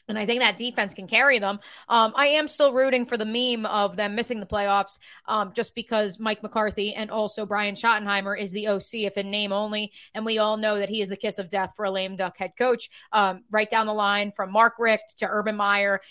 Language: English